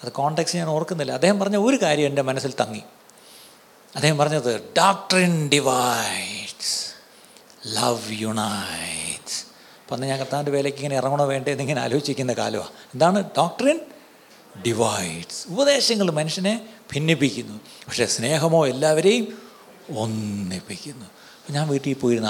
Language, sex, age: Malayalam, male, 60-79